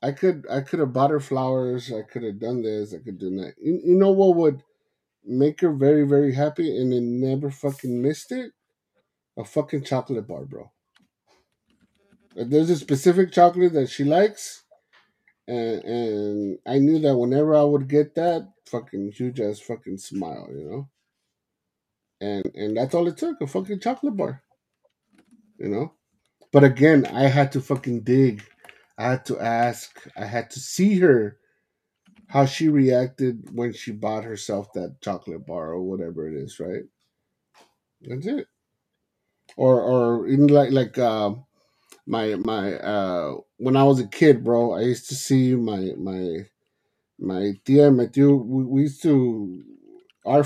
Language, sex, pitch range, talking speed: English, male, 115-145 Hz, 160 wpm